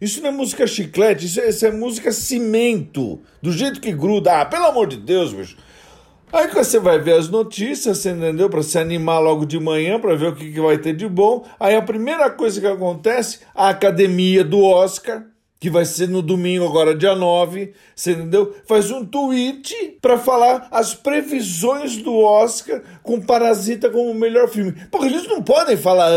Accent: Brazilian